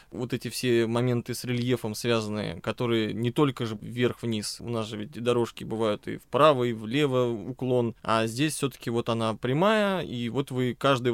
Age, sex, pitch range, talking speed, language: 20-39, male, 115-135 Hz, 185 wpm, Russian